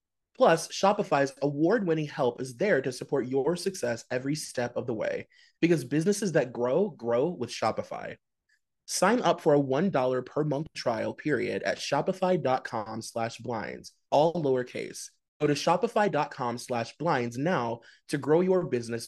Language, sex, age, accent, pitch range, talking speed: English, male, 20-39, American, 125-170 Hz, 140 wpm